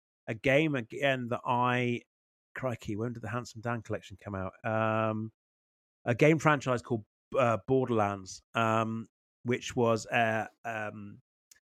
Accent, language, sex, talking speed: British, English, male, 135 wpm